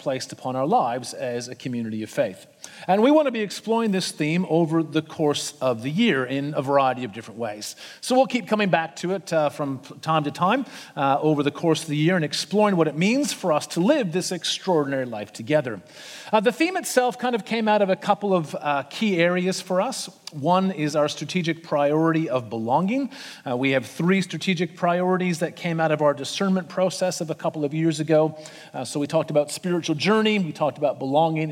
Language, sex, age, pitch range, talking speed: English, male, 40-59, 140-190 Hz, 220 wpm